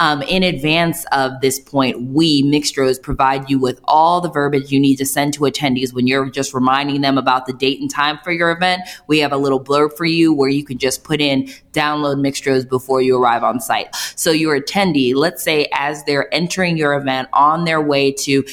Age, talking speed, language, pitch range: 20-39, 215 wpm, English, 130-150 Hz